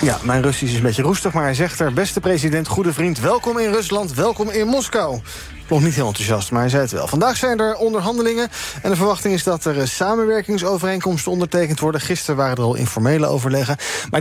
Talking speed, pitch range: 210 wpm, 135-195 Hz